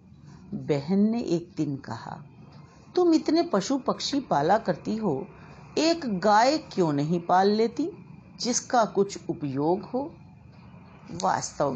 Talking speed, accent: 115 wpm, native